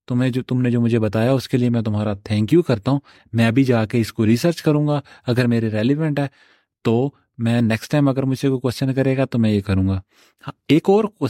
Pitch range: 115-150 Hz